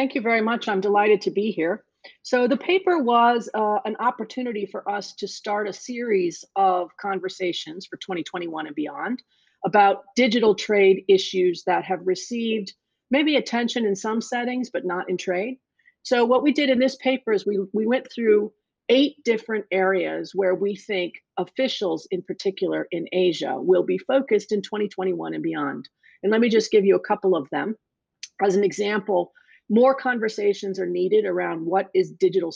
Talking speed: 175 wpm